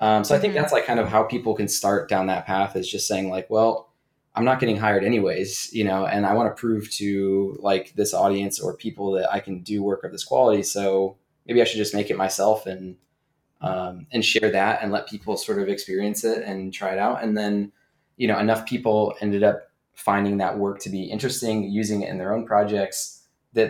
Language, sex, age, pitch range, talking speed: English, male, 20-39, 100-115 Hz, 230 wpm